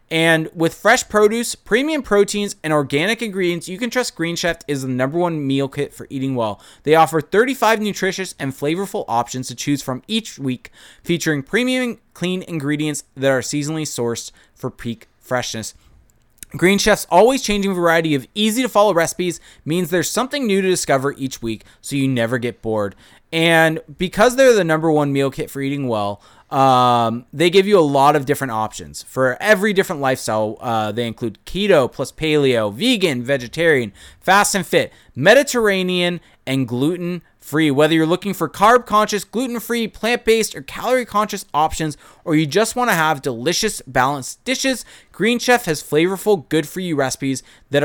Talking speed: 165 wpm